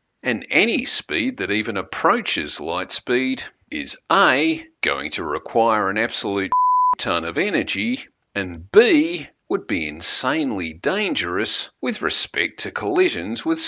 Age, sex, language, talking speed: 50-69, male, English, 125 wpm